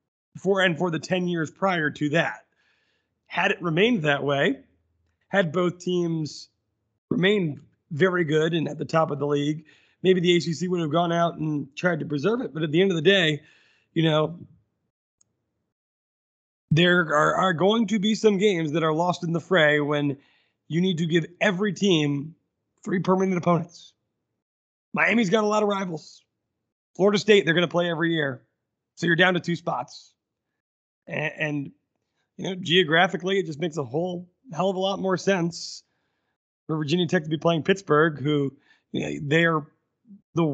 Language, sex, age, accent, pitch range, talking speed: English, male, 30-49, American, 150-185 Hz, 175 wpm